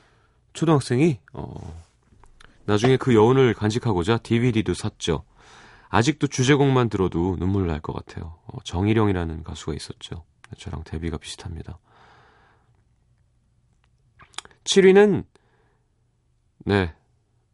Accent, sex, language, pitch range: native, male, Korean, 90-125 Hz